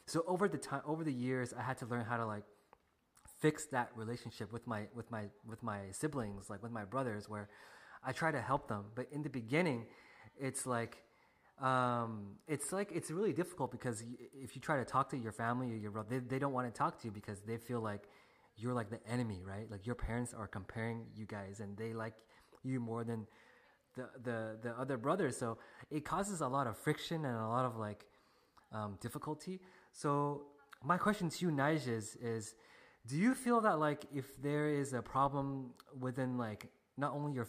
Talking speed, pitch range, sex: 210 wpm, 110-135 Hz, male